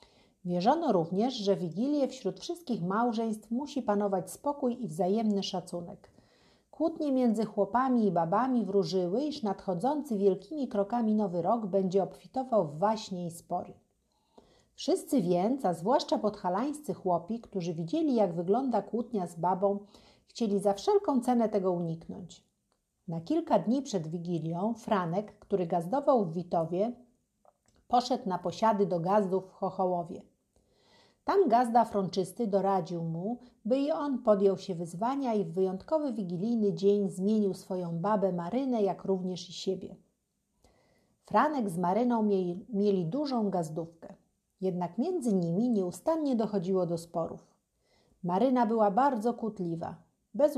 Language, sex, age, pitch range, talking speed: Polish, female, 50-69, 185-240 Hz, 130 wpm